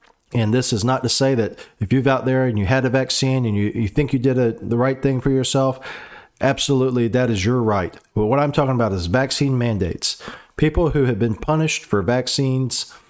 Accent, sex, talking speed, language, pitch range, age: American, male, 220 wpm, English, 105-130 Hz, 40-59